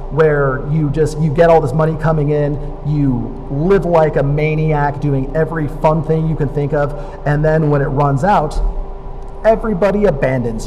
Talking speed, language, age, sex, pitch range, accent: 175 wpm, English, 40-59, male, 135-160 Hz, American